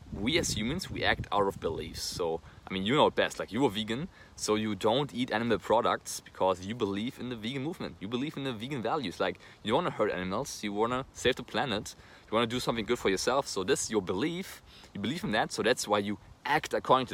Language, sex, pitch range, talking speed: English, male, 95-120 Hz, 250 wpm